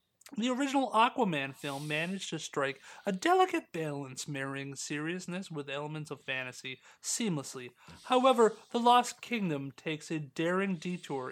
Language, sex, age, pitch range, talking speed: English, male, 30-49, 140-190 Hz, 135 wpm